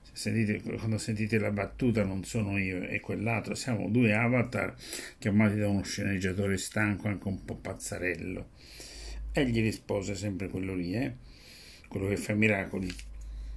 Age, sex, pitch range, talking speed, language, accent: 60-79, male, 95-125 Hz, 150 wpm, Italian, native